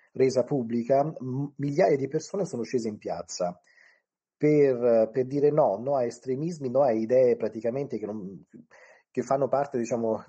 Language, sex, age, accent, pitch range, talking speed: Italian, male, 30-49, native, 110-145 Hz, 145 wpm